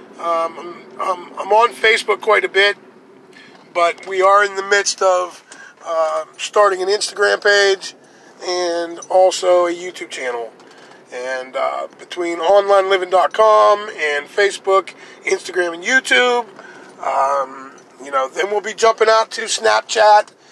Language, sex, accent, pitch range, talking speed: English, male, American, 180-225 Hz, 135 wpm